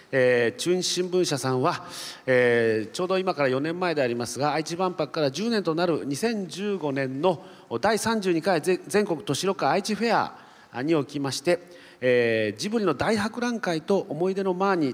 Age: 40-59